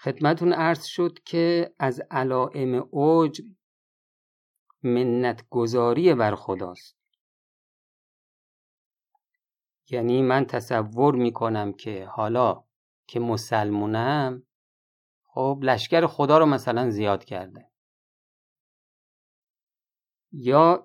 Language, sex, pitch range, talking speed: Persian, male, 115-150 Hz, 80 wpm